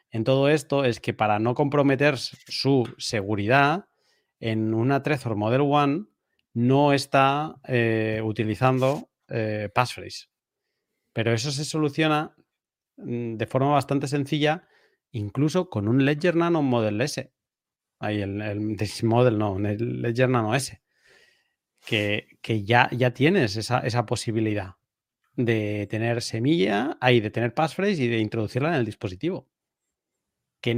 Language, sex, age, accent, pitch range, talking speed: Spanish, male, 40-59, Spanish, 110-140 Hz, 135 wpm